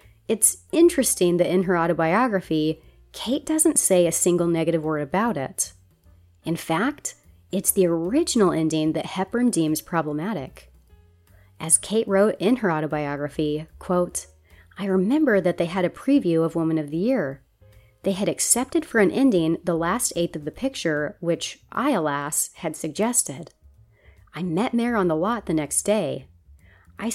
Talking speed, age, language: 155 wpm, 30-49, English